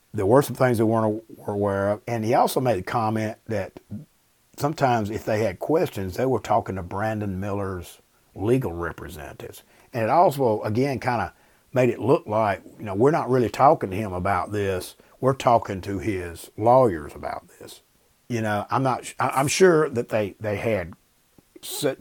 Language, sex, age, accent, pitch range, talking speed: English, male, 50-69, American, 95-120 Hz, 180 wpm